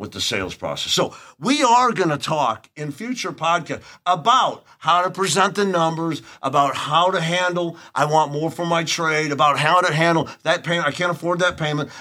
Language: English